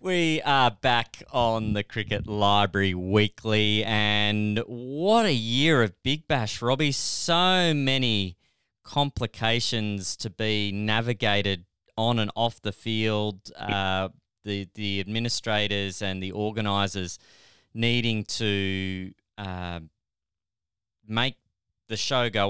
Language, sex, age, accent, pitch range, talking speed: English, male, 20-39, Australian, 95-115 Hz, 110 wpm